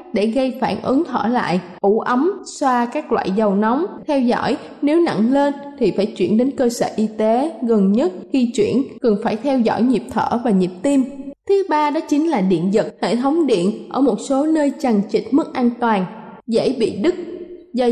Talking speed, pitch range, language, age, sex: 210 wpm, 215-280 Hz, Vietnamese, 20-39, female